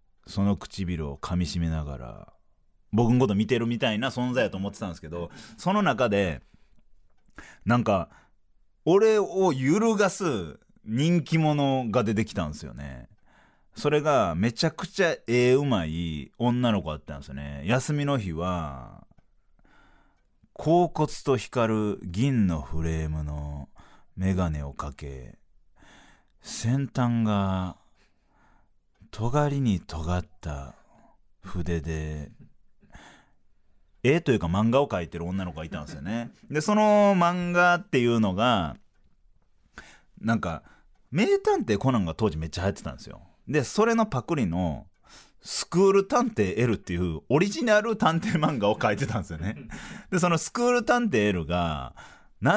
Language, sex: Japanese, male